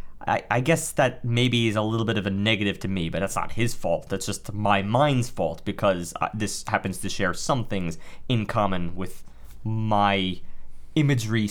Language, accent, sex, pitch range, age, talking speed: English, American, male, 105-135 Hz, 30-49, 185 wpm